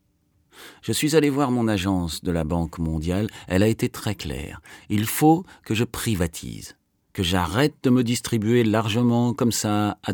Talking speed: 170 wpm